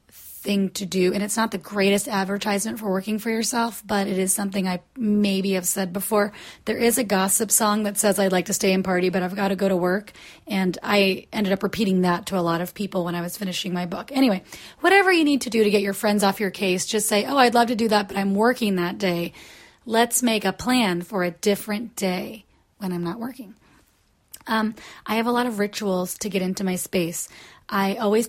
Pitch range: 195-220 Hz